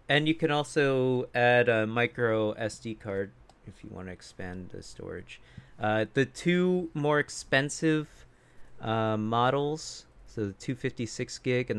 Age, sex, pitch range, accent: 30-49, male, 100-130 Hz, American